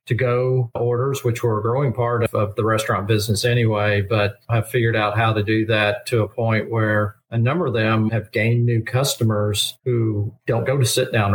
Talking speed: 200 wpm